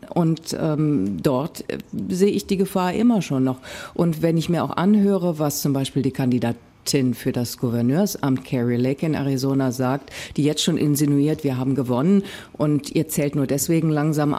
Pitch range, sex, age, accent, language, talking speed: 135-185 Hz, female, 50-69, German, German, 175 wpm